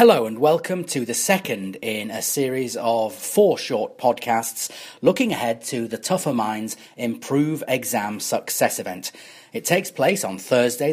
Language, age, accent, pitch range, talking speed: English, 40-59, British, 120-165 Hz, 155 wpm